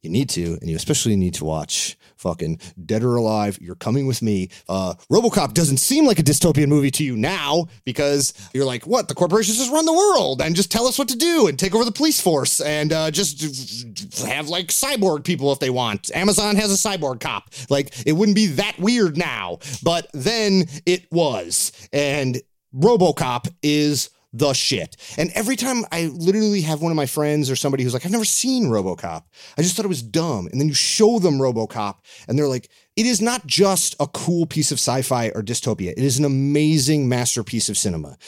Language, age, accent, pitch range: English, 30-49, American, 115-160 Hz